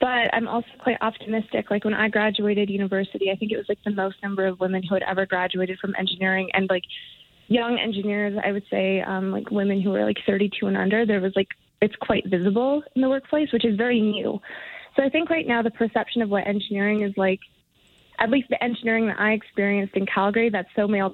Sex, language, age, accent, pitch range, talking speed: female, English, 20-39, American, 195-225 Hz, 225 wpm